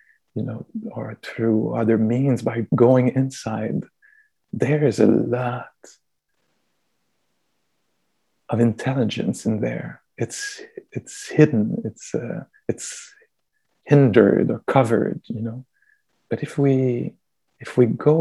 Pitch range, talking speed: 115-135 Hz, 110 wpm